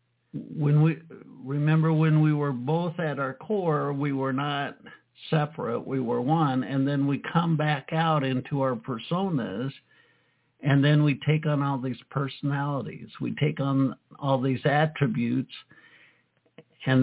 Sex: male